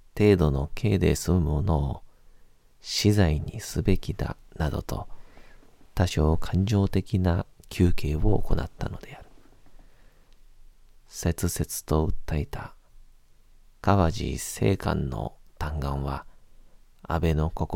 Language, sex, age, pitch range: Japanese, male, 40-59, 75-100 Hz